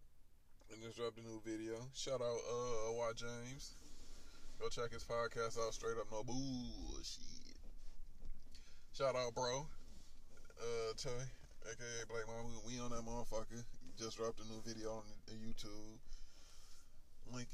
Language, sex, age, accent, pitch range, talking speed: English, male, 20-39, American, 90-140 Hz, 135 wpm